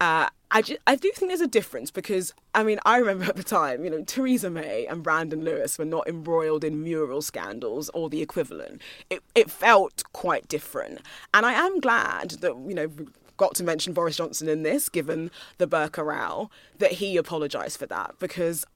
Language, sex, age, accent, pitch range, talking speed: English, female, 20-39, British, 155-195 Hz, 200 wpm